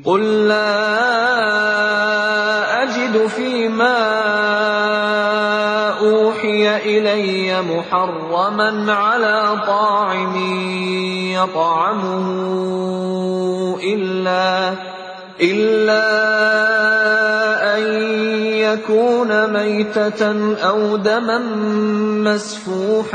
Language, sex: Indonesian, male